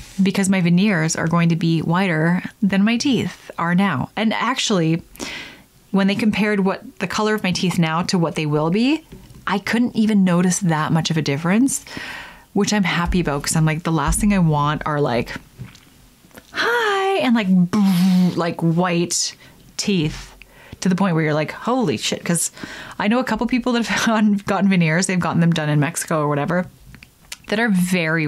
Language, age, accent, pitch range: English, 20-39, American, 170-240 Hz